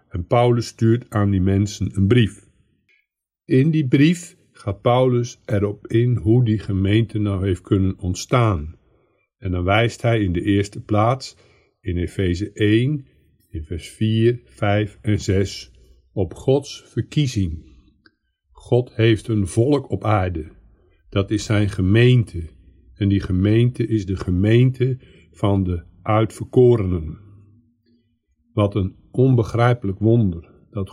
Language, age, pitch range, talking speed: Dutch, 50-69, 100-120 Hz, 130 wpm